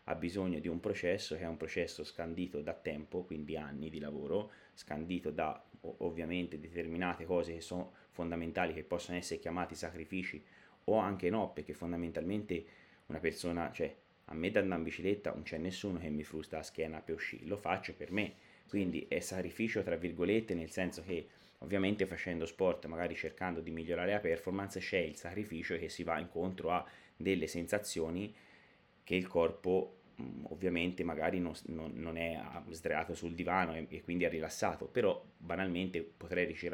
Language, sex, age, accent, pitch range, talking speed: Italian, male, 30-49, native, 80-95 Hz, 170 wpm